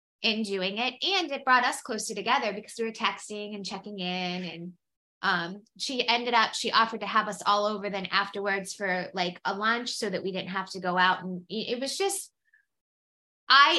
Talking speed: 210 wpm